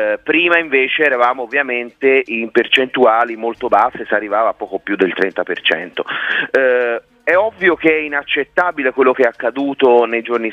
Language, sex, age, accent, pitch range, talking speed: Italian, male, 30-49, native, 115-155 Hz, 155 wpm